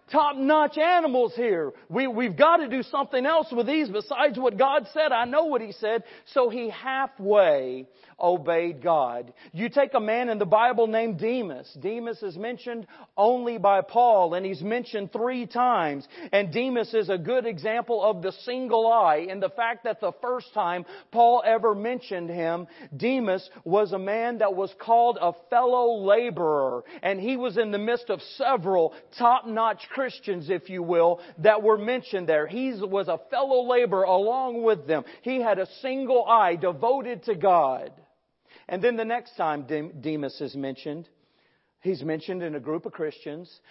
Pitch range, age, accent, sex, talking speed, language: 170-240 Hz, 40-59, American, male, 170 wpm, English